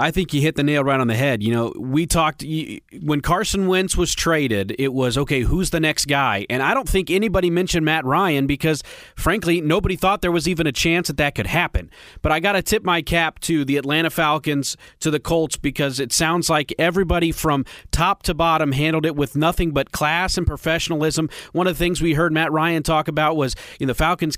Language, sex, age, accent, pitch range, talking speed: English, male, 30-49, American, 145-175 Hz, 225 wpm